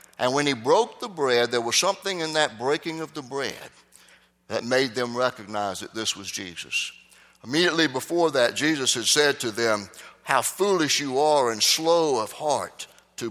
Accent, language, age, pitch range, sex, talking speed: American, English, 60-79, 120-175 Hz, male, 180 wpm